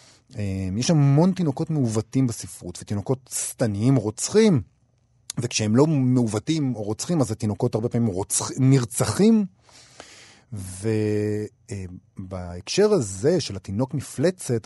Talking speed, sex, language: 95 wpm, male, Hebrew